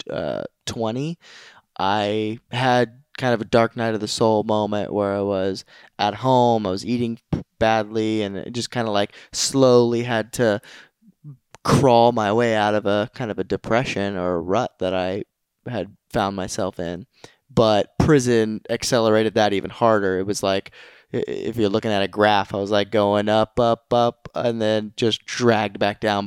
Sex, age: male, 20-39